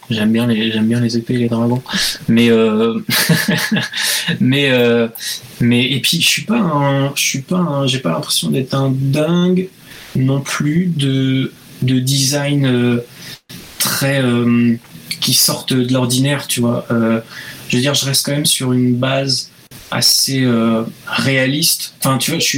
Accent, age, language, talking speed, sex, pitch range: French, 20-39, French, 165 wpm, male, 120-140 Hz